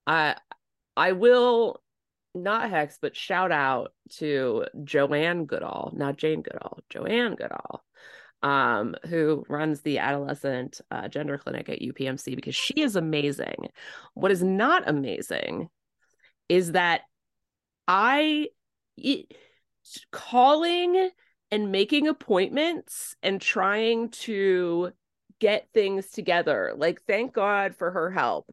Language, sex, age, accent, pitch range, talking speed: English, female, 30-49, American, 185-300 Hz, 115 wpm